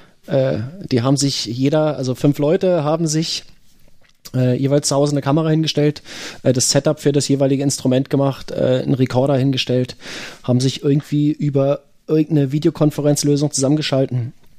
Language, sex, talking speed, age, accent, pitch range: German, male, 145 wpm, 30-49, German, 115-145 Hz